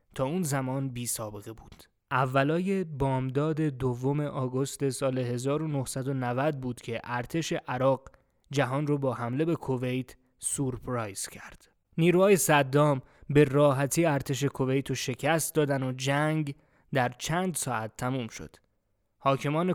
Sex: male